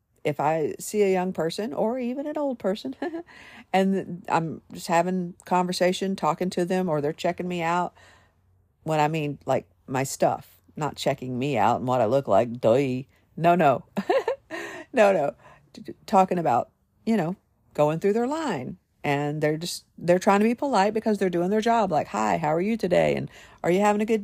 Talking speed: 190 wpm